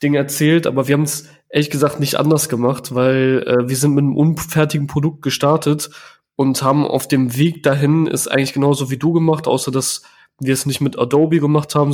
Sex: male